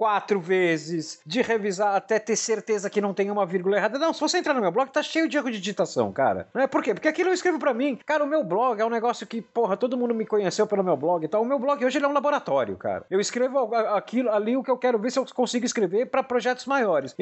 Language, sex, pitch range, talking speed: Portuguese, male, 175-250 Hz, 280 wpm